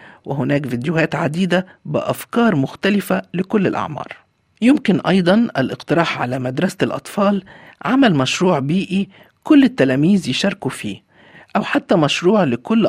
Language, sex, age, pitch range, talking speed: Arabic, male, 50-69, 140-215 Hz, 110 wpm